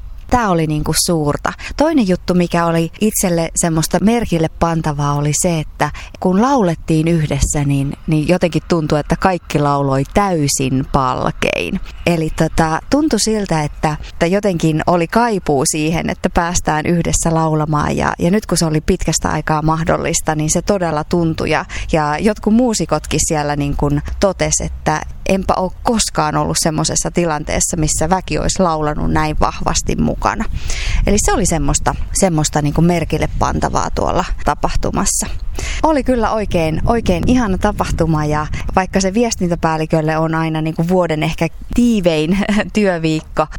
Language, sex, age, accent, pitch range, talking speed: Finnish, female, 20-39, native, 150-190 Hz, 140 wpm